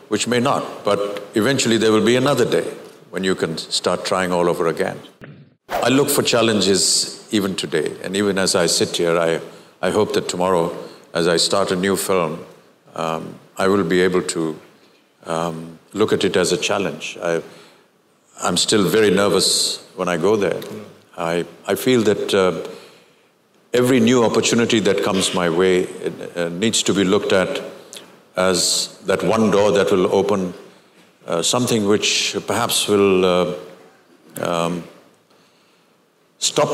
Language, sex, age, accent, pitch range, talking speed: Telugu, male, 60-79, native, 85-110 Hz, 160 wpm